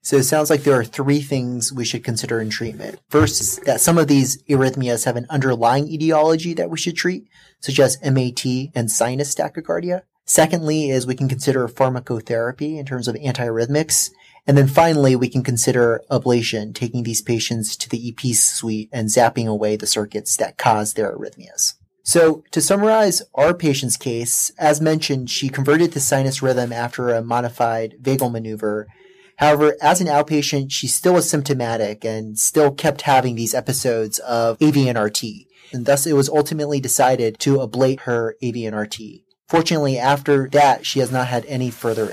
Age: 30-49